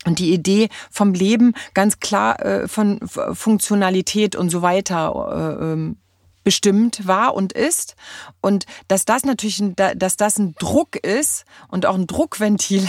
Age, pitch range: 30-49, 195-250 Hz